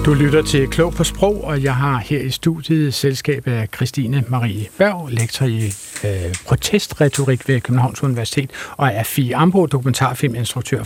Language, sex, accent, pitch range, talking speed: Danish, male, native, 125-160 Hz, 160 wpm